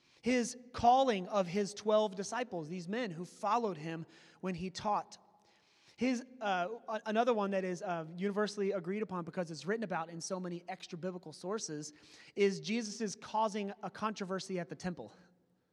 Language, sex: English, male